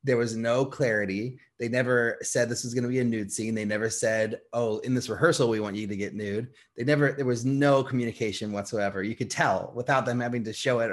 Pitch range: 110-135 Hz